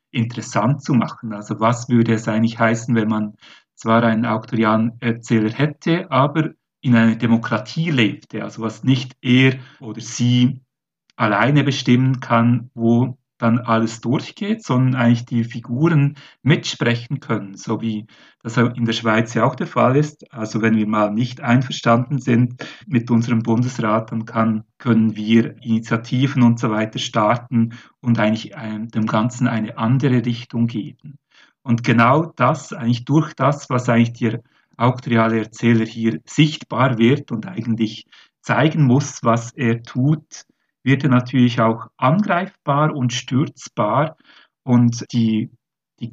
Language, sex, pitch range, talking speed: German, male, 115-135 Hz, 140 wpm